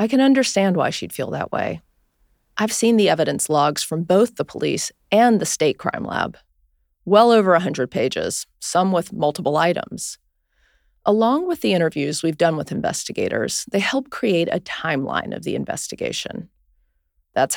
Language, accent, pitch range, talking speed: English, American, 165-215 Hz, 165 wpm